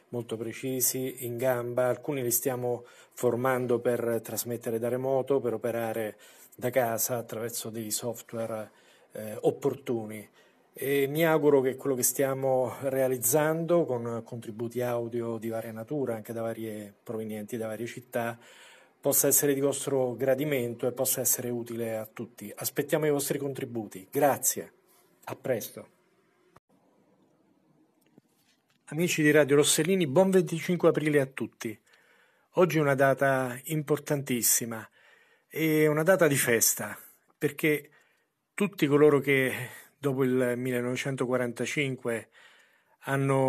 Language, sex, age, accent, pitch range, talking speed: Italian, male, 40-59, native, 120-145 Hz, 120 wpm